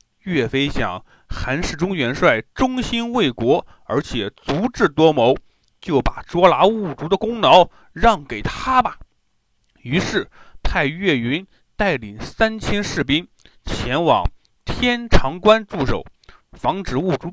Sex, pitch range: male, 140-215 Hz